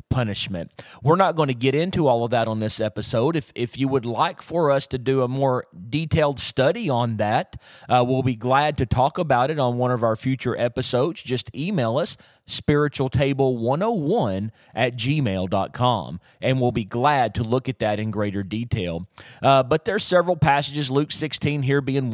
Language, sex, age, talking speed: English, male, 30-49, 185 wpm